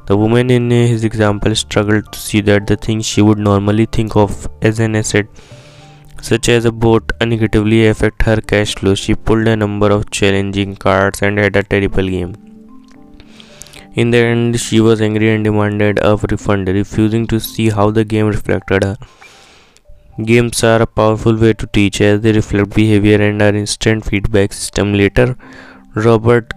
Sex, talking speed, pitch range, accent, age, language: male, 170 wpm, 100-110 Hz, Indian, 20-39, English